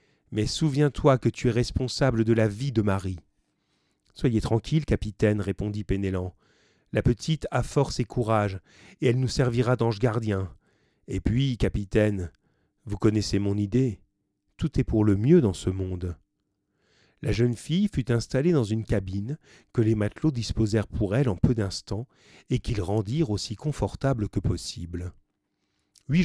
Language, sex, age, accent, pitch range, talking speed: French, male, 40-59, French, 100-130 Hz, 155 wpm